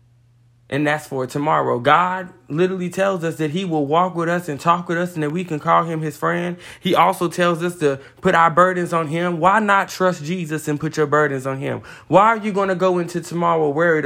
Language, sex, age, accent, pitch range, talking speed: English, male, 20-39, American, 135-185 Hz, 235 wpm